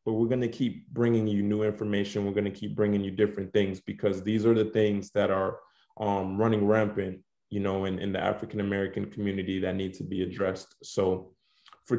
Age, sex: 20-39, male